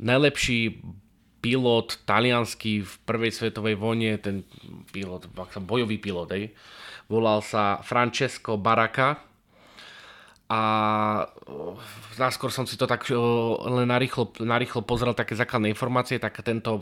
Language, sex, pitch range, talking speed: English, male, 100-120 Hz, 105 wpm